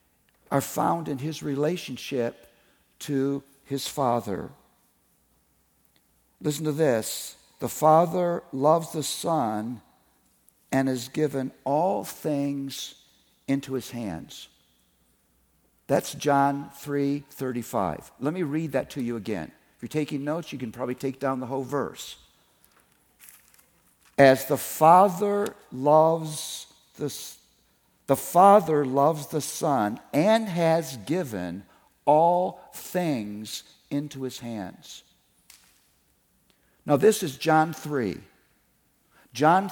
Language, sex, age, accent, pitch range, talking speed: English, male, 60-79, American, 120-160 Hz, 110 wpm